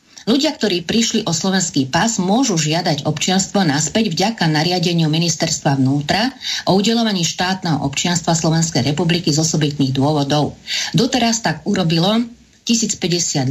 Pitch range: 150-190 Hz